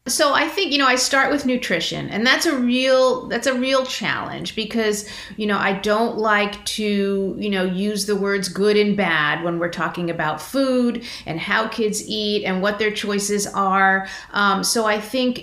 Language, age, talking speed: English, 30-49, 195 wpm